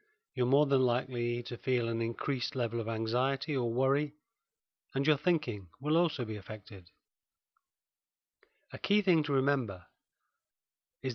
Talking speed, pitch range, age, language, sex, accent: 140 wpm, 115-145 Hz, 40-59, English, male, British